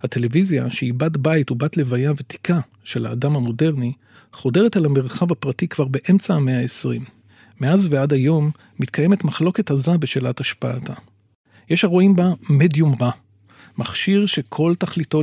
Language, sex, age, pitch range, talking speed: Hebrew, male, 40-59, 125-170 Hz, 135 wpm